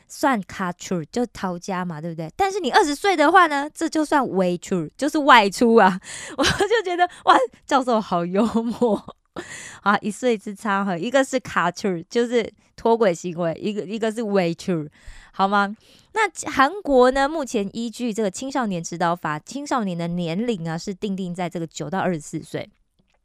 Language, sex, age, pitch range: Korean, female, 20-39, 180-250 Hz